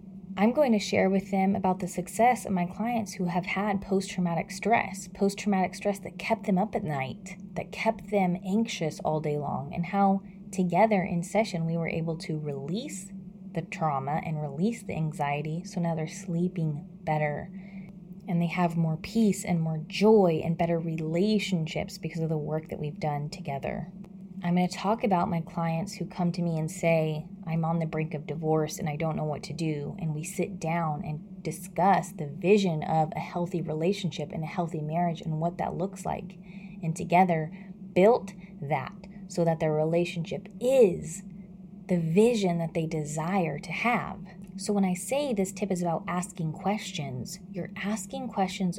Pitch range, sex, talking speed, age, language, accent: 165-195 Hz, female, 180 wpm, 20-39, English, American